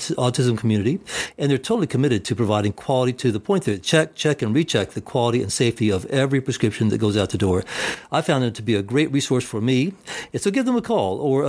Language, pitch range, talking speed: English, 110-140 Hz, 245 wpm